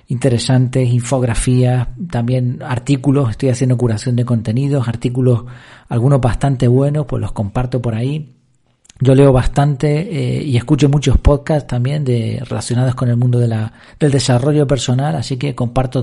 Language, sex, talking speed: Spanish, male, 150 wpm